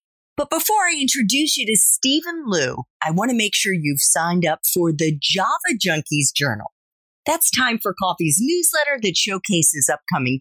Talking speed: 165 wpm